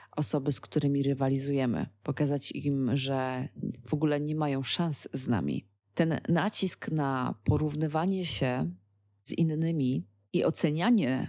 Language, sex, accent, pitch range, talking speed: Polish, female, native, 125-155 Hz, 120 wpm